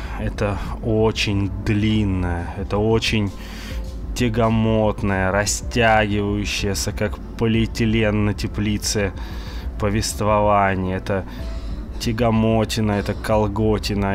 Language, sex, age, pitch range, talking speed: Russian, male, 20-39, 95-110 Hz, 70 wpm